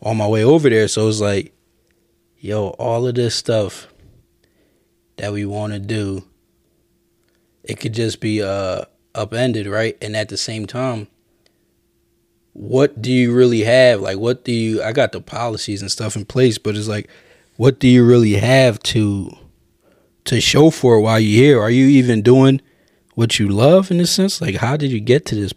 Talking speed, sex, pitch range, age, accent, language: 185 wpm, male, 105-125 Hz, 20-39, American, English